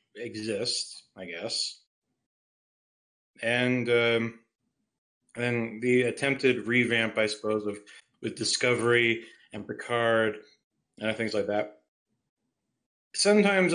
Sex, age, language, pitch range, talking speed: male, 30-49, English, 115-150 Hz, 95 wpm